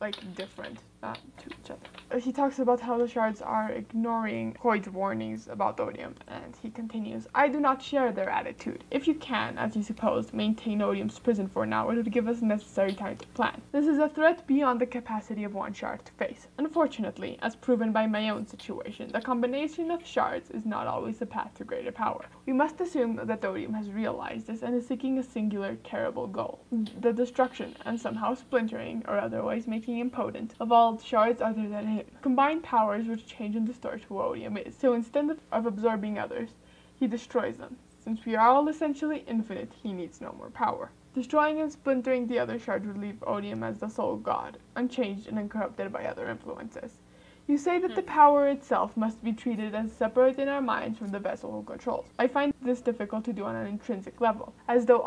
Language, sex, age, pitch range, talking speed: English, female, 10-29, 215-265 Hz, 200 wpm